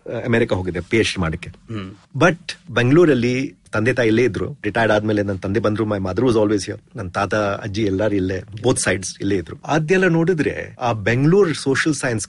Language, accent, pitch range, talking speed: Kannada, native, 105-145 Hz, 165 wpm